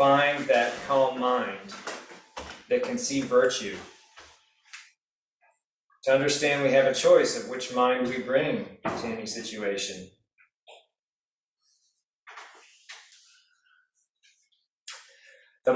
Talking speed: 90 wpm